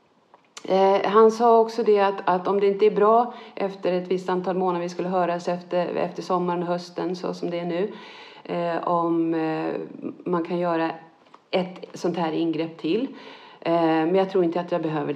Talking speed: 190 wpm